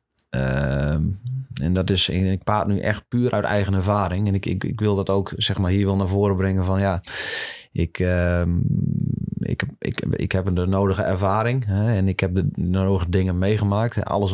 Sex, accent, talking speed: male, Dutch, 200 wpm